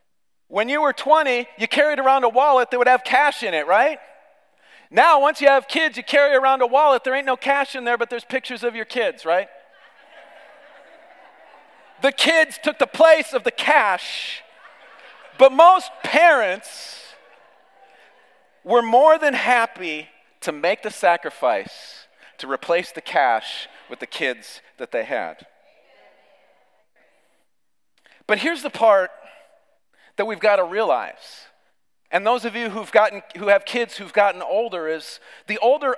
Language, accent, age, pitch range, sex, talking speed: English, American, 40-59, 215-285 Hz, male, 150 wpm